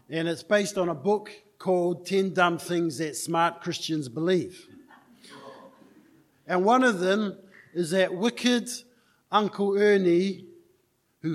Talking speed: 125 wpm